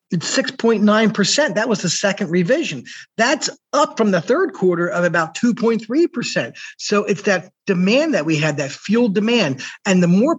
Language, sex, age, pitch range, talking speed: English, male, 50-69, 165-220 Hz, 165 wpm